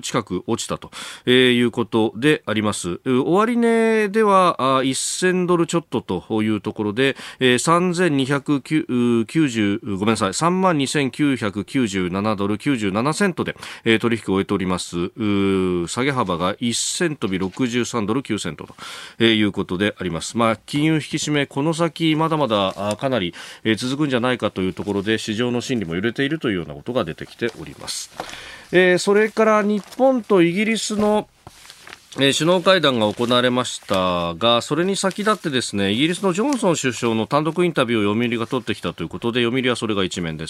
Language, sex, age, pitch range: Japanese, male, 40-59, 105-155 Hz